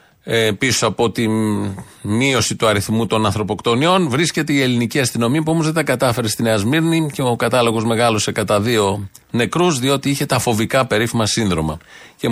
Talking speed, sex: 170 wpm, male